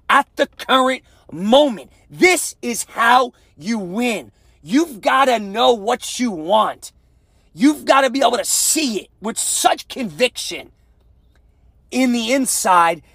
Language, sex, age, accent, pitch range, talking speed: English, male, 40-59, American, 185-265 Hz, 135 wpm